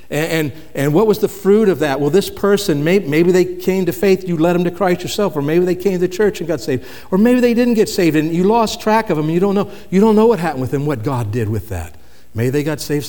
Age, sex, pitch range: 60-79, male, 120-180 Hz